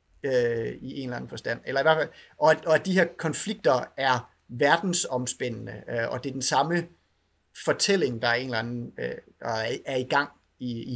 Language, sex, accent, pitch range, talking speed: Danish, male, native, 125-170 Hz, 185 wpm